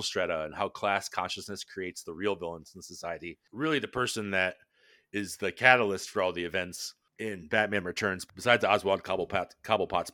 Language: English